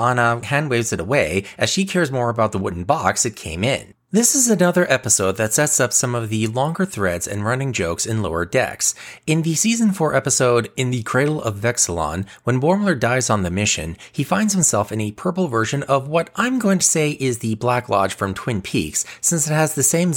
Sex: male